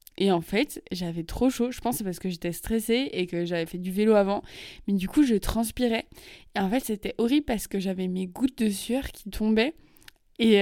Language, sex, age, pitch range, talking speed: French, female, 20-39, 185-225 Hz, 230 wpm